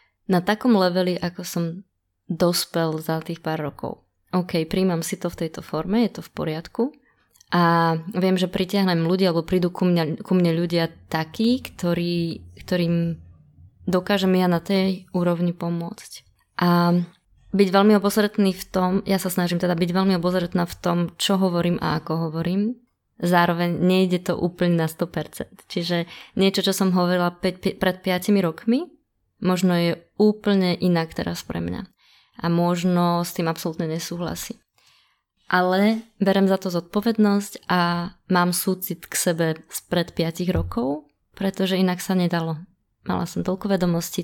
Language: Slovak